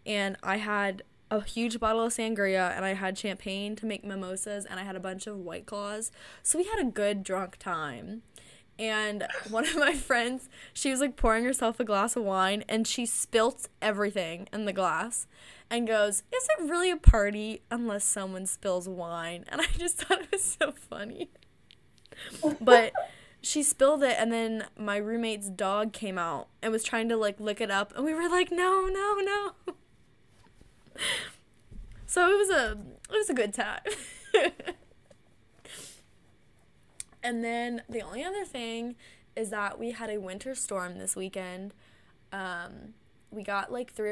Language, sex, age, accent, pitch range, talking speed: English, female, 10-29, American, 195-235 Hz, 170 wpm